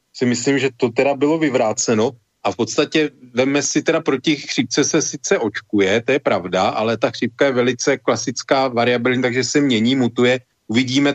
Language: Slovak